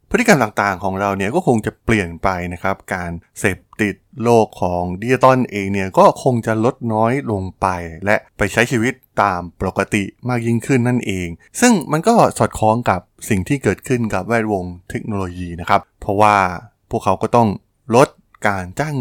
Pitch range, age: 95-120 Hz, 20-39